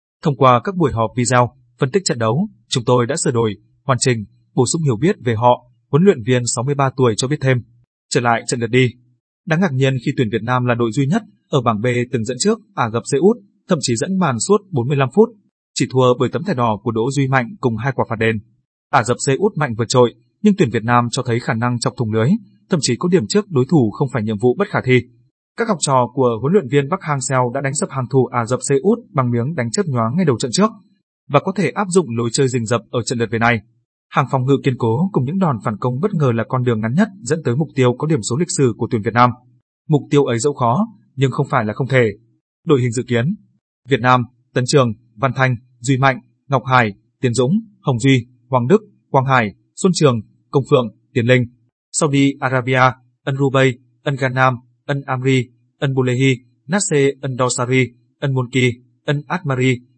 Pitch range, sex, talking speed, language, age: 120-145 Hz, male, 235 wpm, Vietnamese, 20-39